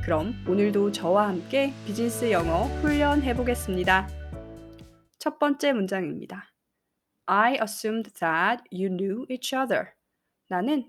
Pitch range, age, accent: 195-270 Hz, 20-39, native